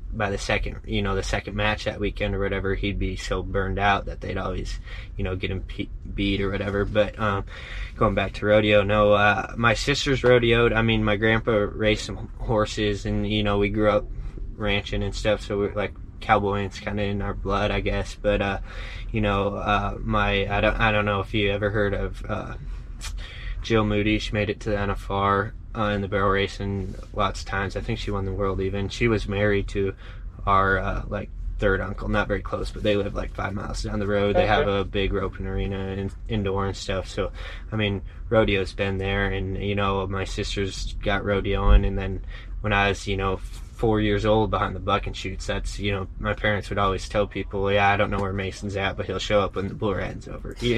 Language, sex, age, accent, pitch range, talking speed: English, male, 10-29, American, 95-105 Hz, 230 wpm